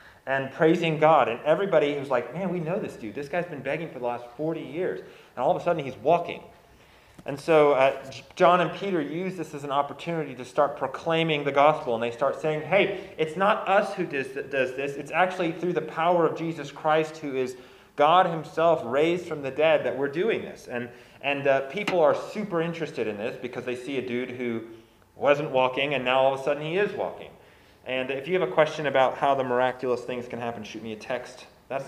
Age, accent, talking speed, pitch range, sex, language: 30-49, American, 225 wpm, 125-165 Hz, male, English